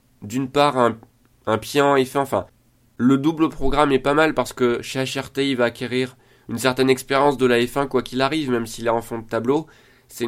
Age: 20-39